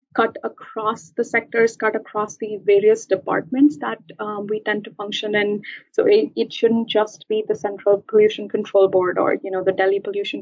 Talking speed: 190 wpm